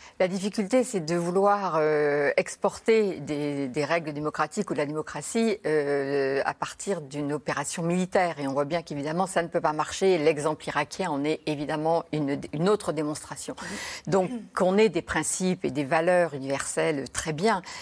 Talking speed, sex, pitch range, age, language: 170 wpm, female, 145-185 Hz, 60-79, French